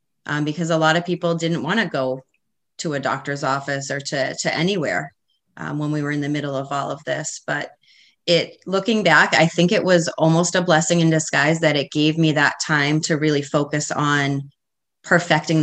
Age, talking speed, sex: 30-49, 205 wpm, female